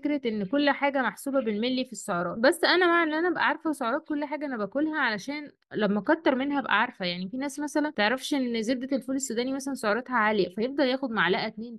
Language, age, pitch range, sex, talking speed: Arabic, 20-39, 220-290 Hz, female, 215 wpm